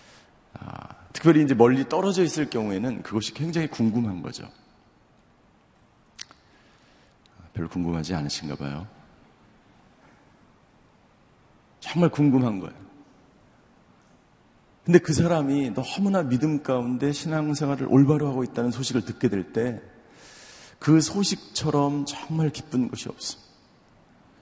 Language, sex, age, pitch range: Korean, male, 40-59, 115-145 Hz